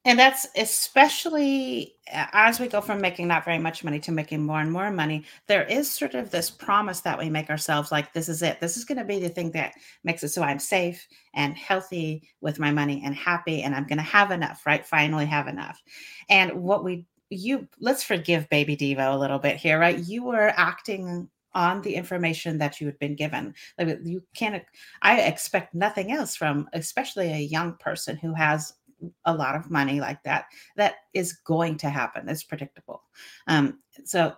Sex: female